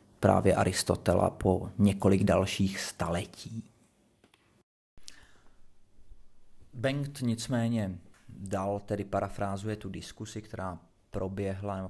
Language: Czech